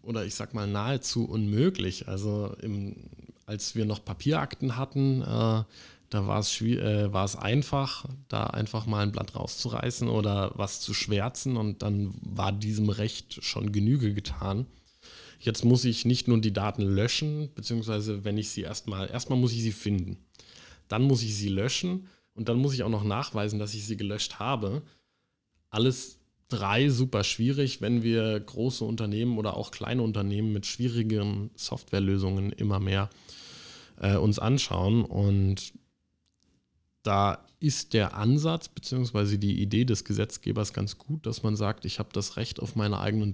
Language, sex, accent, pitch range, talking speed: German, male, German, 100-120 Hz, 160 wpm